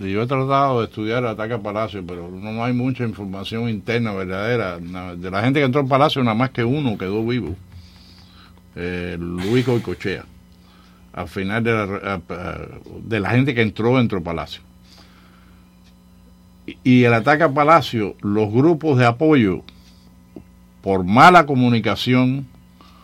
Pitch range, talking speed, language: 90-125 Hz, 145 wpm, English